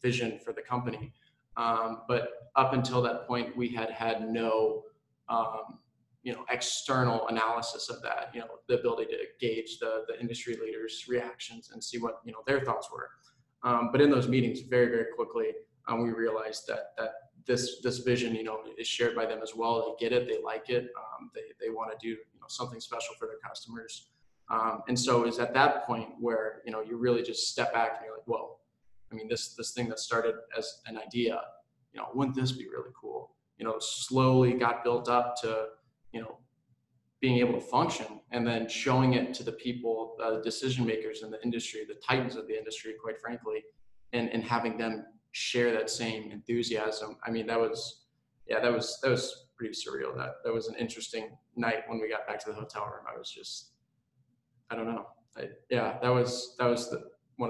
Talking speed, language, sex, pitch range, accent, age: 210 wpm, English, male, 115-130 Hz, American, 20-39